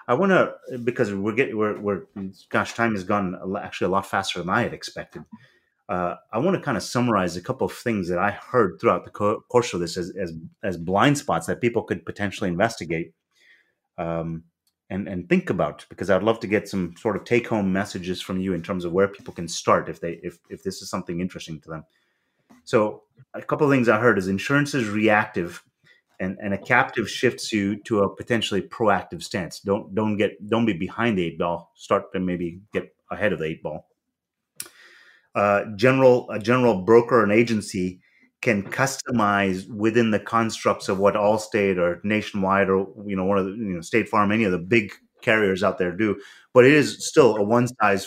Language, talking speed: English, 210 wpm